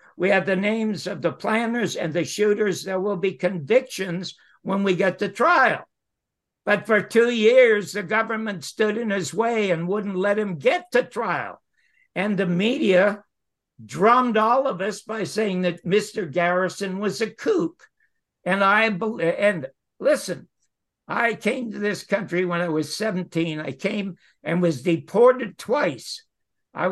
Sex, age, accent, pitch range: male, 60-79, American, 150-205 Hz